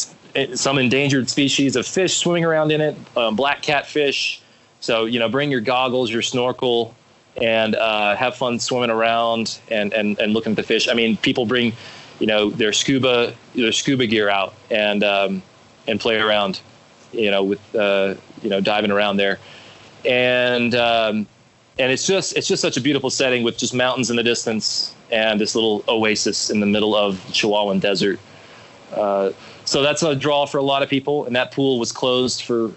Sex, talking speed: male, 185 wpm